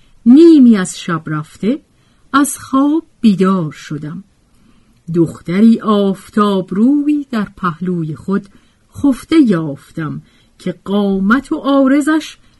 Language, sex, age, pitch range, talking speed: Persian, female, 50-69, 165-255 Hz, 95 wpm